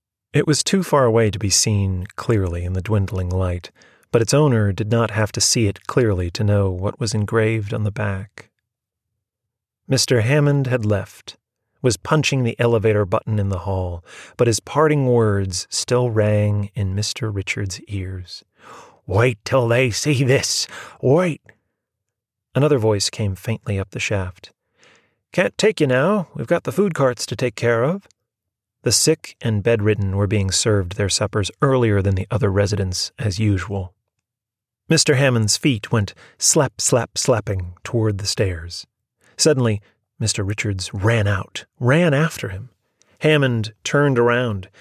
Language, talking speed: English, 155 wpm